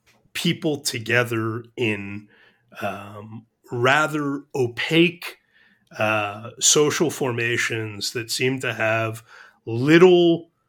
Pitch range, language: 110-130 Hz, English